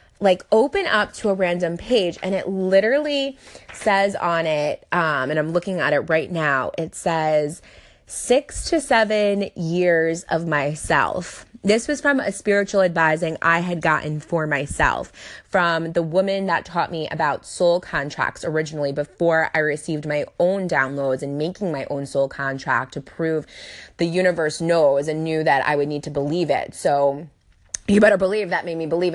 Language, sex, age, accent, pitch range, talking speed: English, female, 20-39, American, 150-200 Hz, 175 wpm